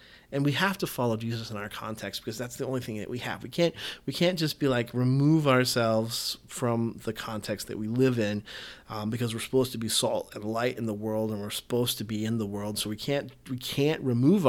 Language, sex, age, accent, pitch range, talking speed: English, male, 30-49, American, 110-145 Hz, 245 wpm